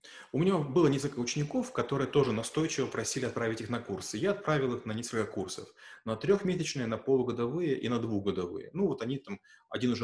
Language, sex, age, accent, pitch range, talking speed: Russian, male, 30-49, native, 115-145 Hz, 190 wpm